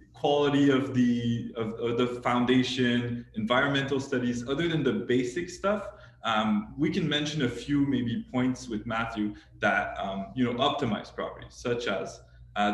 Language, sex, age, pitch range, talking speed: French, male, 20-39, 115-140 Hz, 155 wpm